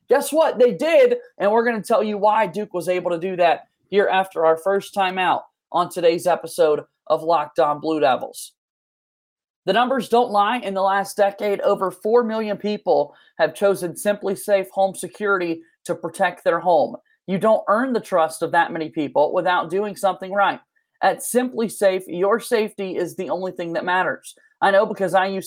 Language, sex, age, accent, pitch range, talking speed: English, male, 30-49, American, 175-215 Hz, 190 wpm